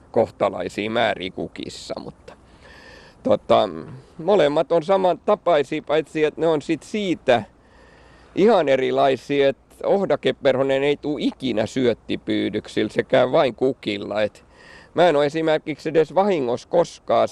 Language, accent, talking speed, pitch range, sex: Finnish, native, 115 wpm, 130-170 Hz, male